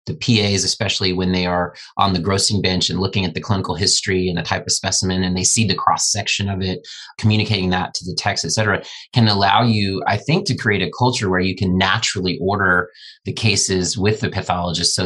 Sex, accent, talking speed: male, American, 220 wpm